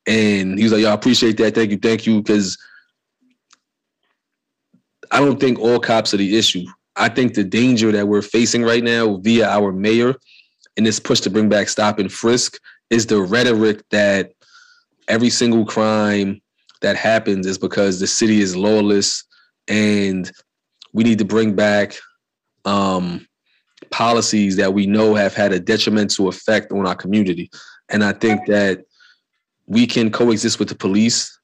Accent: American